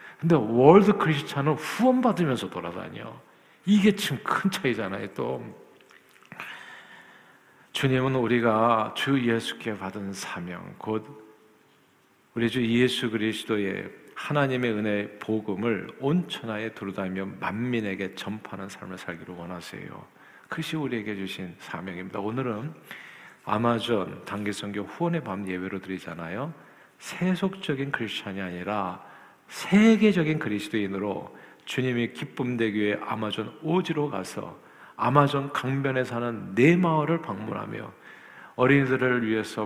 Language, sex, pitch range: Korean, male, 100-145 Hz